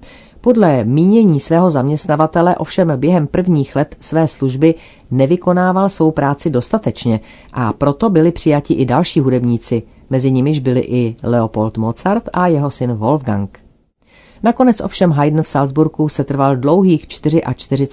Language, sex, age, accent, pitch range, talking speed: Czech, female, 40-59, native, 125-155 Hz, 135 wpm